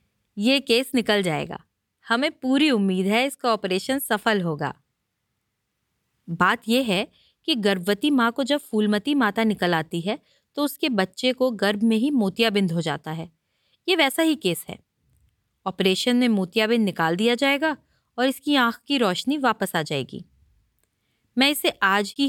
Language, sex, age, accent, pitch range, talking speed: Hindi, female, 30-49, native, 190-255 Hz, 160 wpm